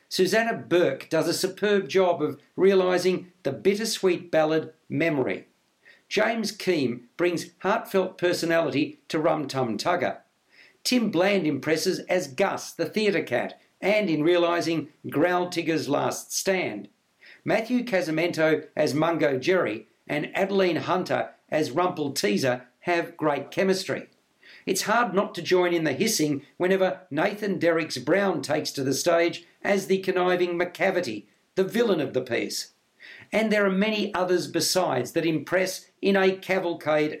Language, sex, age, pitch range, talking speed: English, male, 60-79, 160-195 Hz, 140 wpm